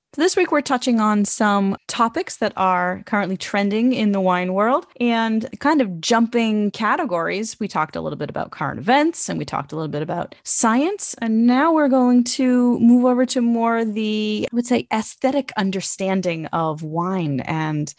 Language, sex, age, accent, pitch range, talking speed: English, female, 30-49, American, 175-230 Hz, 180 wpm